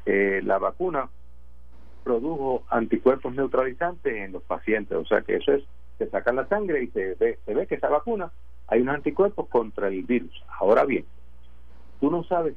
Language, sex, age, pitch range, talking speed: Spanish, male, 50-69, 100-160 Hz, 175 wpm